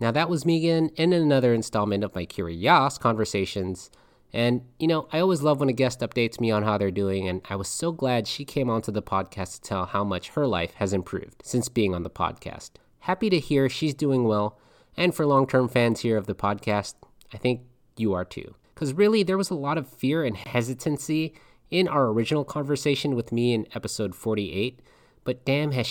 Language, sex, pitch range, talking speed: English, male, 105-145 Hz, 210 wpm